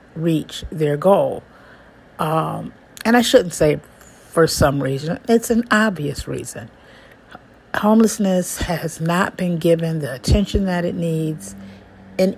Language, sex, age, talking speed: English, female, 60-79, 125 wpm